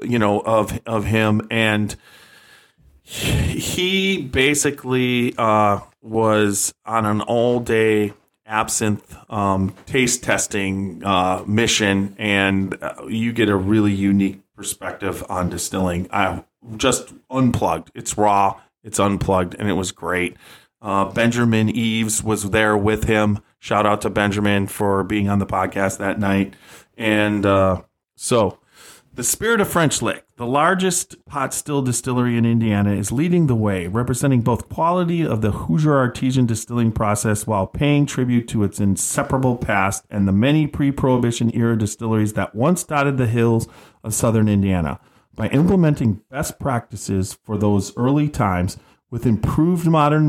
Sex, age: male, 30-49